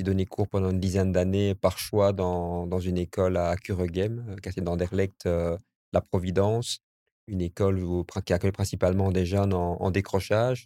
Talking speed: 180 wpm